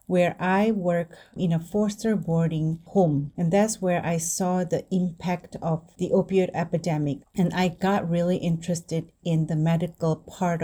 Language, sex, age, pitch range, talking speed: English, female, 30-49, 160-185 Hz, 160 wpm